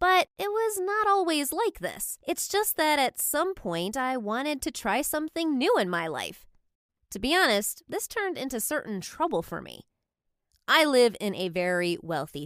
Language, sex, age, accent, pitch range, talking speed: English, female, 20-39, American, 195-305 Hz, 185 wpm